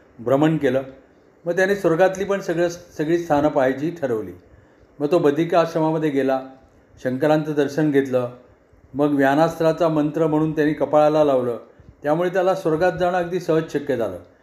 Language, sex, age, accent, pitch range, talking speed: Marathi, male, 40-59, native, 140-170 Hz, 140 wpm